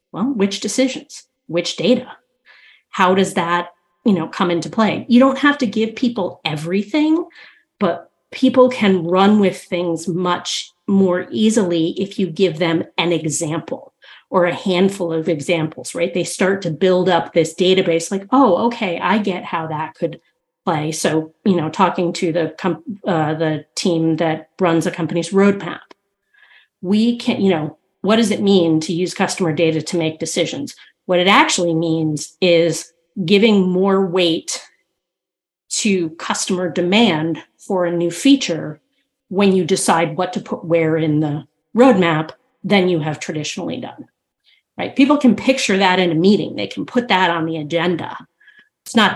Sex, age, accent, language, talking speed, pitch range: female, 40-59, American, English, 160 wpm, 170-205 Hz